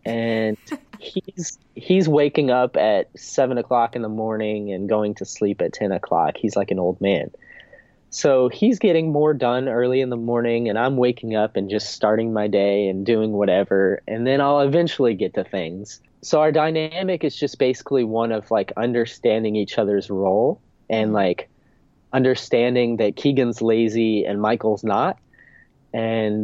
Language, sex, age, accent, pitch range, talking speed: English, male, 20-39, American, 105-130 Hz, 170 wpm